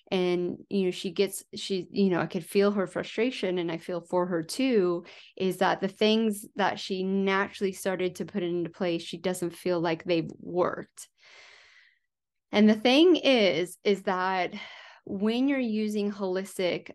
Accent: American